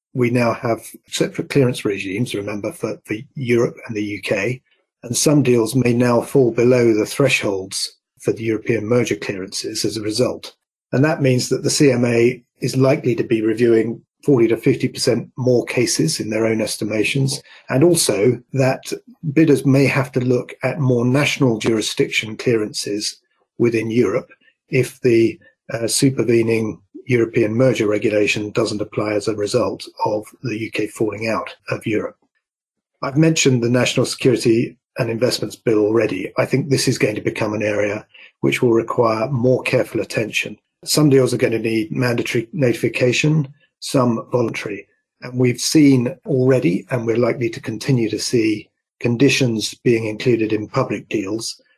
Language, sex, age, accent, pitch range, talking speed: English, male, 40-59, British, 110-135 Hz, 160 wpm